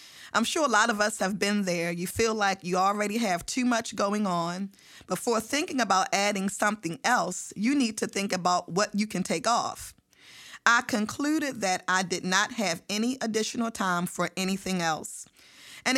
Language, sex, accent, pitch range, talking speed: English, female, American, 180-225 Hz, 185 wpm